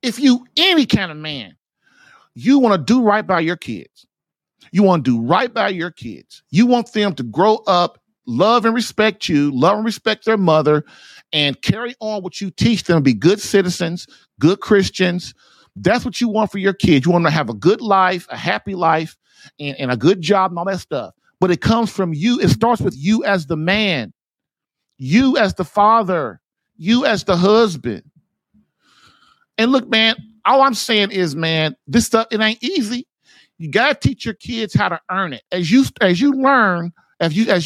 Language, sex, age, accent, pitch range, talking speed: English, male, 50-69, American, 175-225 Hz, 205 wpm